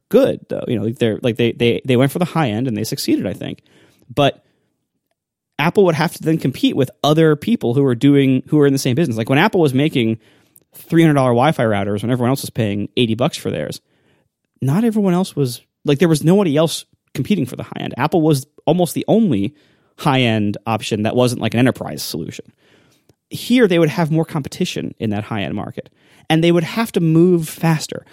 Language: English